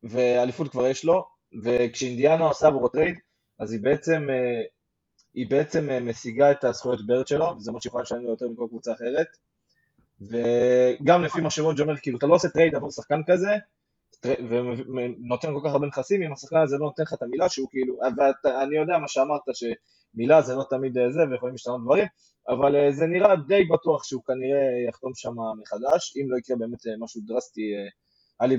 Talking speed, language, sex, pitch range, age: 180 wpm, Hebrew, male, 125-155 Hz, 20-39